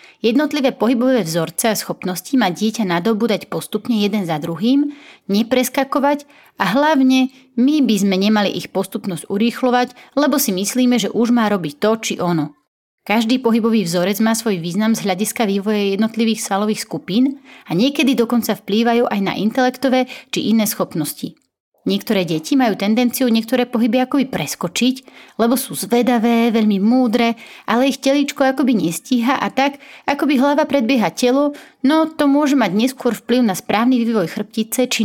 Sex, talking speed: female, 150 wpm